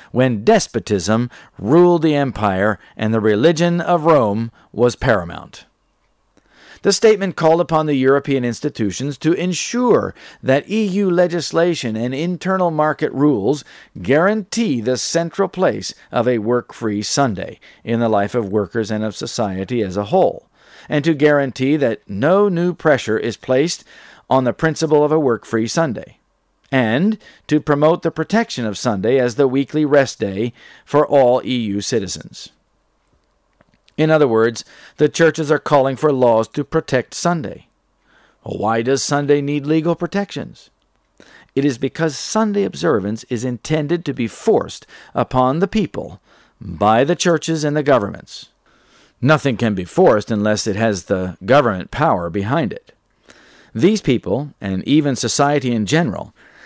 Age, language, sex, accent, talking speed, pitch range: 50-69, English, male, American, 145 wpm, 115-165 Hz